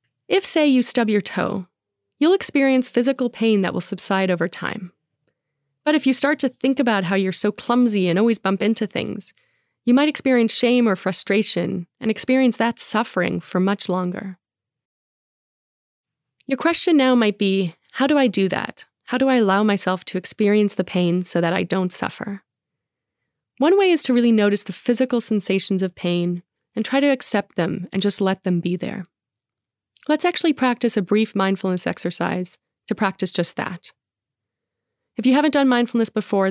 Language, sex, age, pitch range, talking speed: English, female, 20-39, 180-240 Hz, 175 wpm